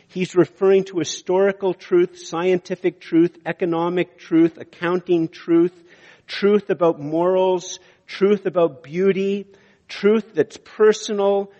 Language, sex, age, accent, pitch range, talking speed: English, male, 50-69, American, 165-205 Hz, 105 wpm